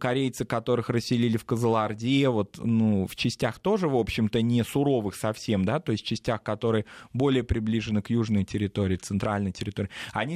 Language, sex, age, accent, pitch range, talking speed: Russian, male, 20-39, native, 105-130 Hz, 160 wpm